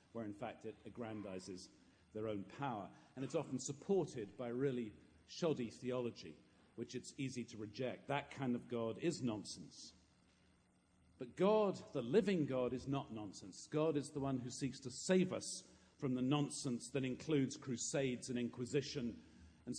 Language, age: English, 50-69